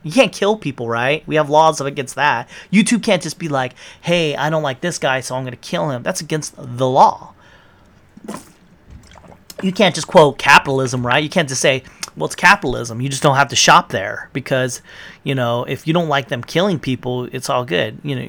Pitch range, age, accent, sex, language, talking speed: 130-180 Hz, 30-49, American, male, English, 215 wpm